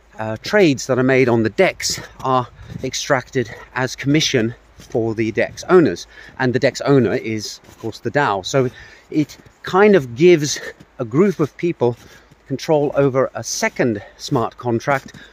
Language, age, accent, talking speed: English, 40-59, British, 155 wpm